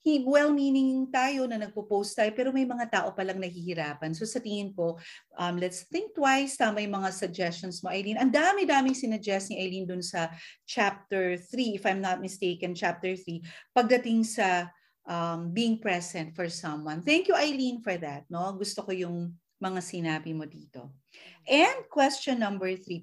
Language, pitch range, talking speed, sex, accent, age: Filipino, 170-240 Hz, 165 wpm, female, native, 40-59